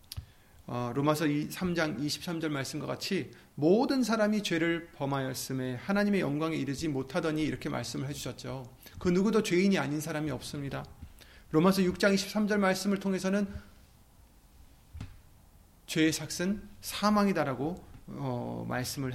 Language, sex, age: Korean, male, 30-49